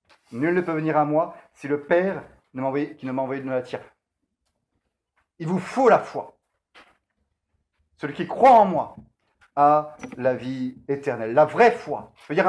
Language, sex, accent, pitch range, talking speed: French, male, French, 130-185 Hz, 175 wpm